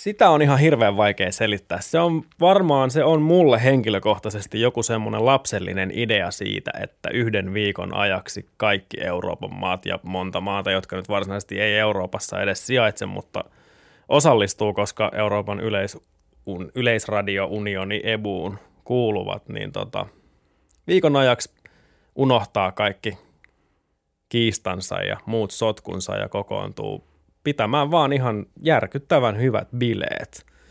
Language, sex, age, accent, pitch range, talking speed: Finnish, male, 20-39, native, 95-115 Hz, 115 wpm